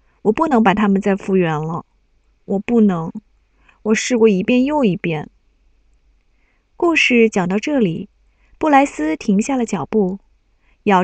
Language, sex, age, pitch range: Chinese, female, 20-39, 200-260 Hz